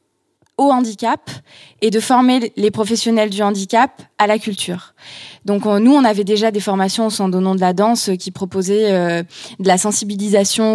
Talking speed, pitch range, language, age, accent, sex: 180 wpm, 190-230 Hz, French, 20-39, French, female